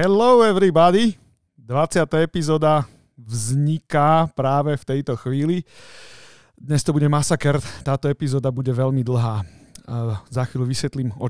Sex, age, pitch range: male, 40-59, 115-145 Hz